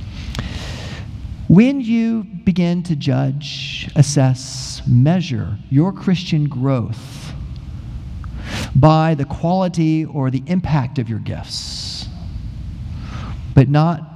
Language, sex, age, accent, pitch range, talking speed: English, male, 40-59, American, 130-190 Hz, 90 wpm